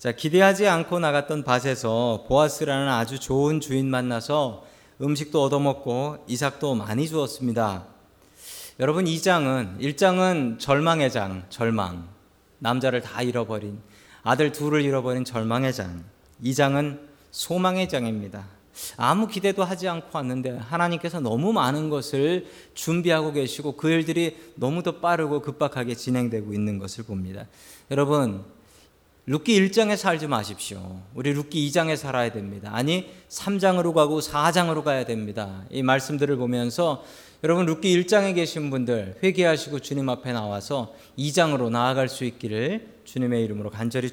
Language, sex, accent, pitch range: Korean, male, native, 115-155 Hz